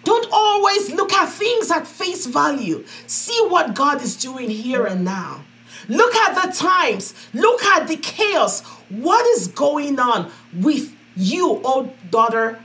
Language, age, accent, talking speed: English, 40-59, Nigerian, 150 wpm